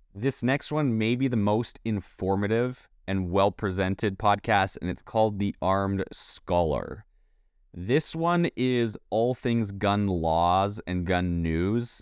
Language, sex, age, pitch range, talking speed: English, male, 20-39, 90-110 Hz, 135 wpm